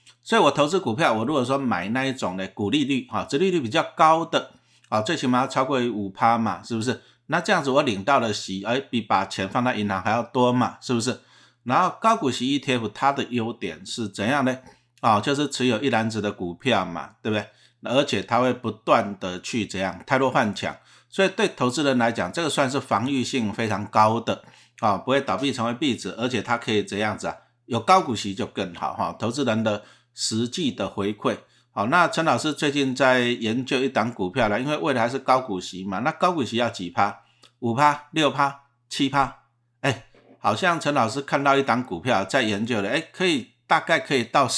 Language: Chinese